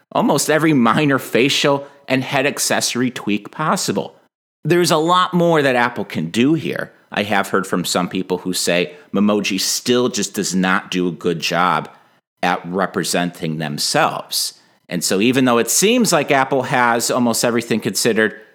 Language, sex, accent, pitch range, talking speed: English, male, American, 85-130 Hz, 160 wpm